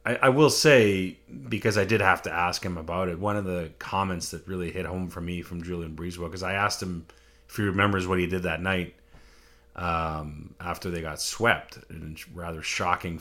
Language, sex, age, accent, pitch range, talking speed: English, male, 30-49, American, 85-100 Hz, 210 wpm